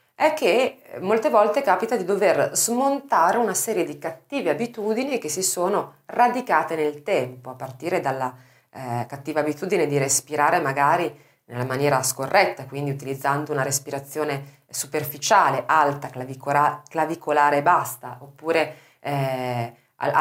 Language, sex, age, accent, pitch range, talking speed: Italian, female, 30-49, native, 135-195 Hz, 125 wpm